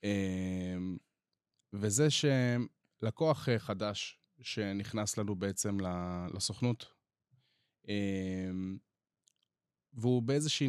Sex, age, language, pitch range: male, 20-39, Hebrew, 100-130 Hz